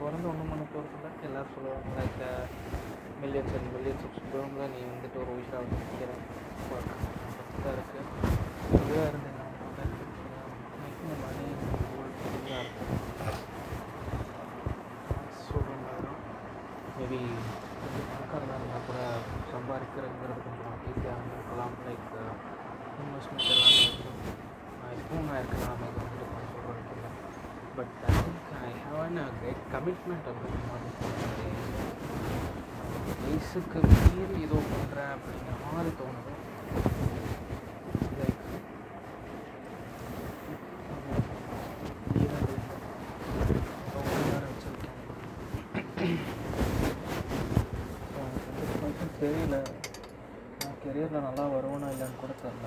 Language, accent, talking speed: Tamil, native, 60 wpm